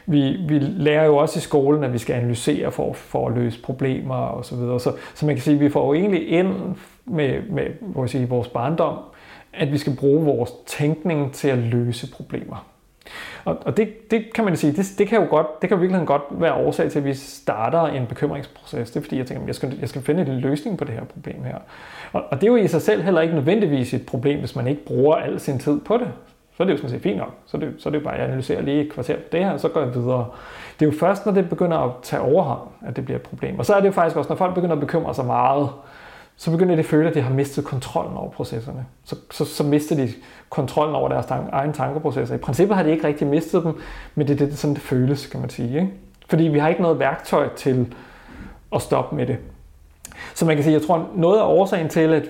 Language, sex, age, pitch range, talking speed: Danish, male, 30-49, 135-165 Hz, 265 wpm